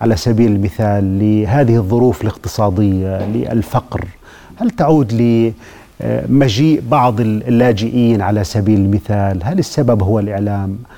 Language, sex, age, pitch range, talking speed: Arabic, male, 40-59, 105-125 Hz, 105 wpm